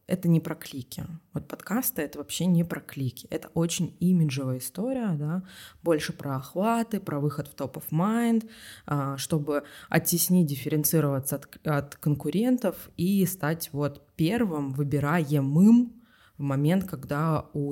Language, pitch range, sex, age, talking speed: Russian, 140-180 Hz, female, 20-39, 130 wpm